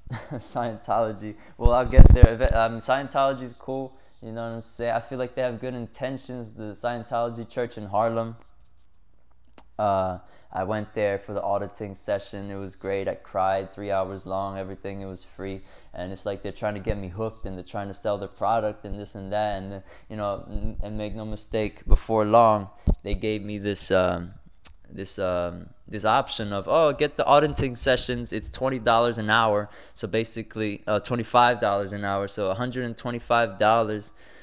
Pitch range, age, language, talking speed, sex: 100-120 Hz, 20-39, English, 190 wpm, male